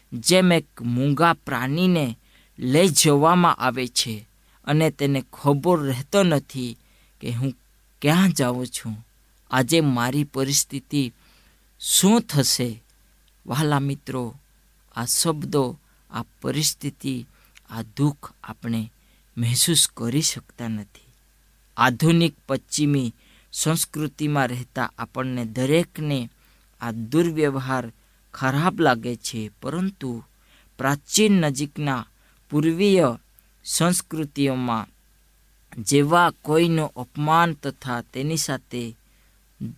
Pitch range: 120-155 Hz